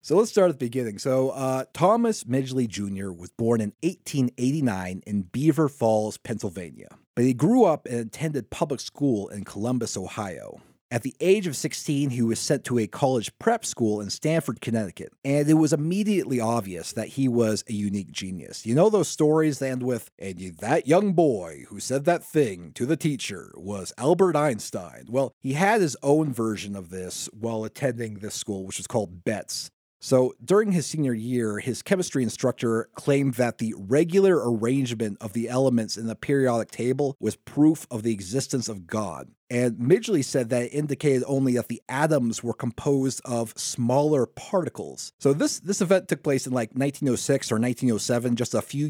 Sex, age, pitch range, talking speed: male, 30-49, 115-150 Hz, 185 wpm